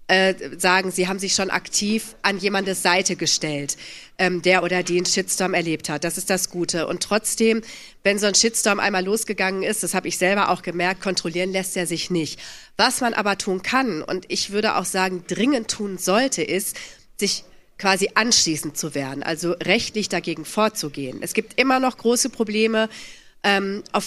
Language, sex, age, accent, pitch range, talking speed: German, female, 40-59, German, 185-220 Hz, 180 wpm